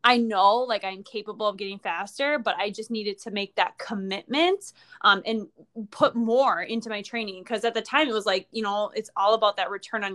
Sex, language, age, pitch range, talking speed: female, English, 20-39, 195-235 Hz, 225 wpm